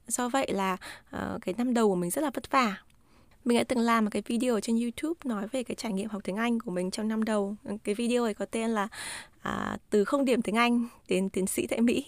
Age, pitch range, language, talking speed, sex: 20-39, 205-265 Hz, Vietnamese, 260 wpm, female